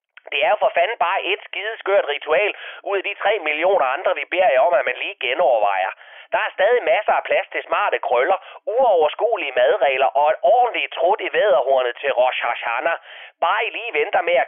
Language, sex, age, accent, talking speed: Danish, male, 30-49, native, 205 wpm